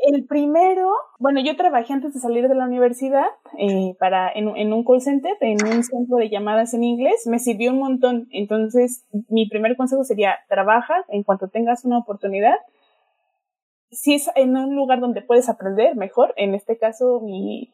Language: English